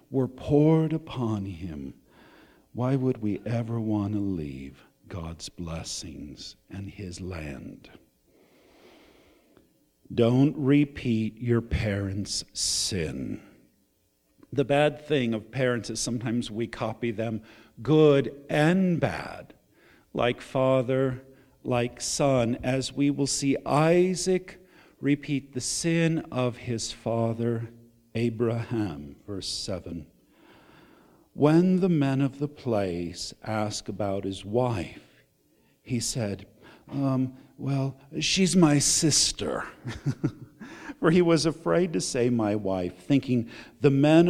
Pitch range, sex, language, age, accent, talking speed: 115-150 Hz, male, English, 50-69, American, 110 wpm